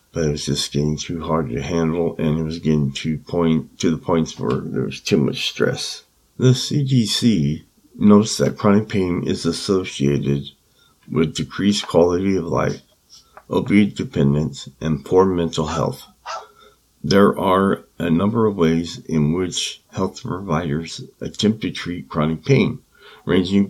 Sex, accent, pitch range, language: male, American, 75-95 Hz, English